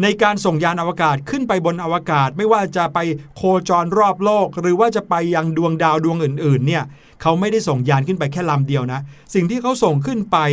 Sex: male